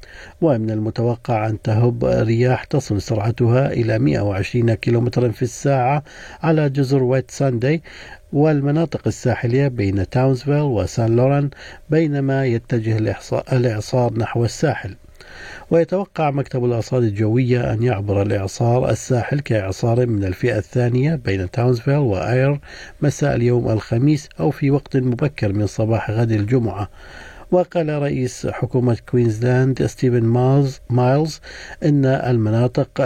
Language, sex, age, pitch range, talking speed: Arabic, male, 50-69, 100-130 Hz, 110 wpm